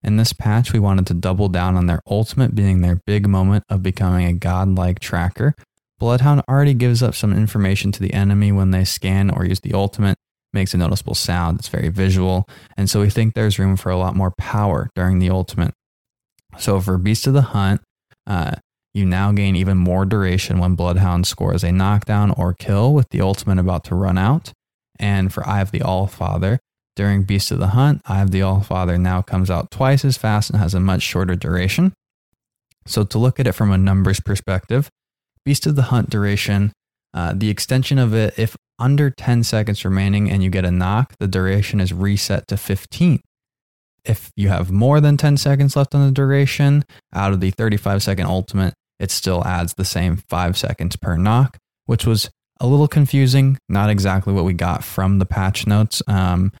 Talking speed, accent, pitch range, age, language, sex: 195 wpm, American, 95-115 Hz, 20-39, English, male